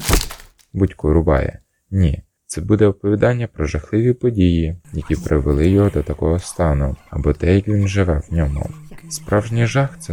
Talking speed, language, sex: 160 wpm, Ukrainian, male